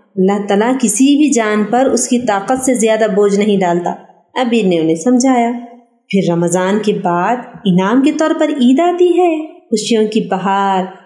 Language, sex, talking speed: Urdu, female, 175 wpm